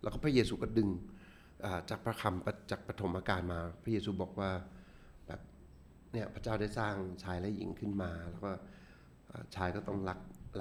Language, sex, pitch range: Thai, male, 90-110 Hz